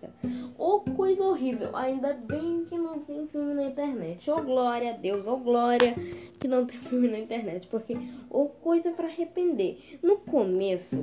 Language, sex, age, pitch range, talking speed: Portuguese, female, 10-29, 210-315 Hz, 180 wpm